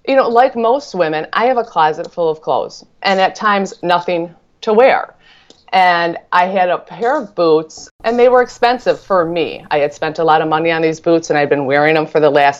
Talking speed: 235 wpm